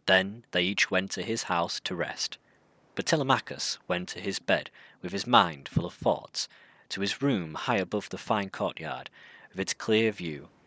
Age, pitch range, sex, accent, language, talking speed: 30-49, 90-105 Hz, male, British, English, 185 wpm